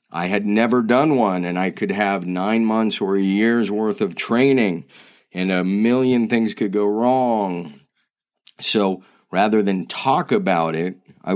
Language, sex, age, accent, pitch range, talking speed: English, male, 30-49, American, 95-115 Hz, 165 wpm